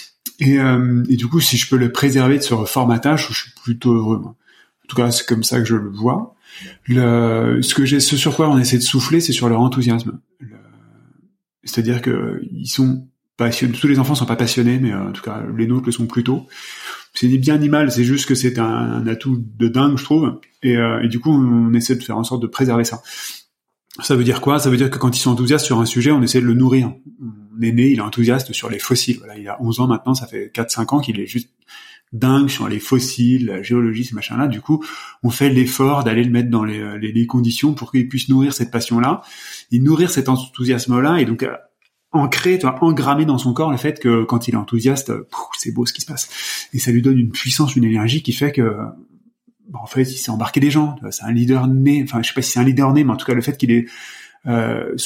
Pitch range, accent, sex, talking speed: 120-140 Hz, French, male, 255 wpm